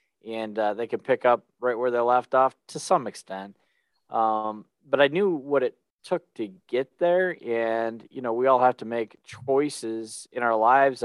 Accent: American